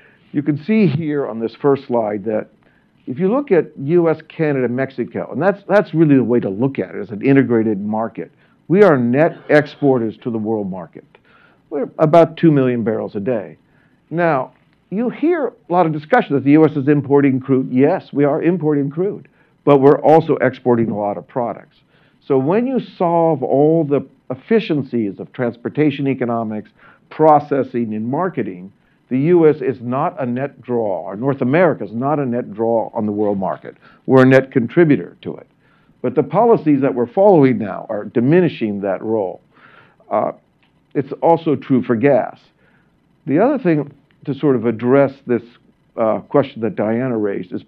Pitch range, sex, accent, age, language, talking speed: 120-160 Hz, male, American, 50-69, English, 175 wpm